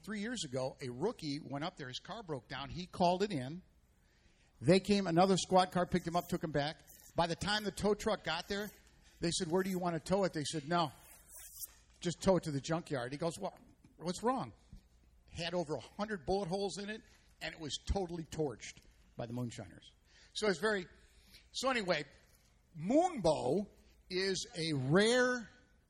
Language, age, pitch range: English, 50-69, 125-180 Hz